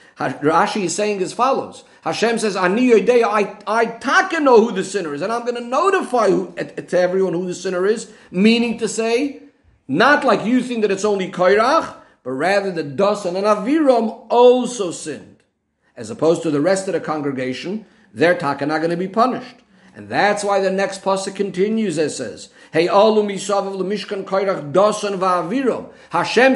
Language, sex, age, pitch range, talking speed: English, male, 50-69, 170-225 Hz, 160 wpm